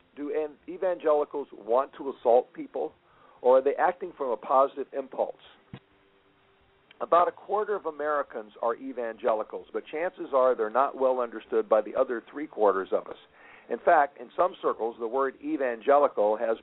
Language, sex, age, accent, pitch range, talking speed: English, male, 50-69, American, 130-200 Hz, 155 wpm